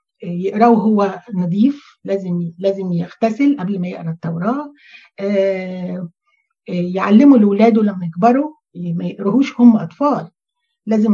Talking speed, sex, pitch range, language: 110 wpm, female, 190-265 Hz, Arabic